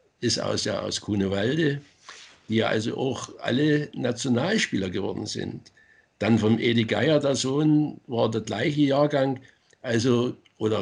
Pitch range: 125-160 Hz